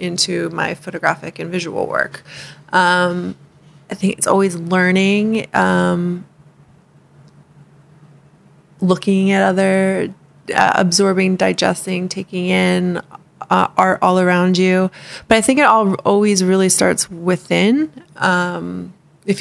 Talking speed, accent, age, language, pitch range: 115 wpm, American, 20-39, English, 170-190 Hz